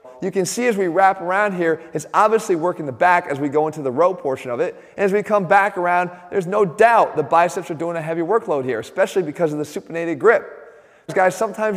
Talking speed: 240 wpm